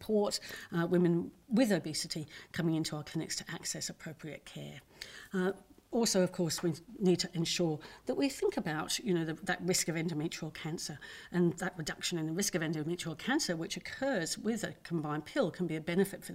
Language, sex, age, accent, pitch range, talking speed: English, female, 50-69, British, 160-185 Hz, 185 wpm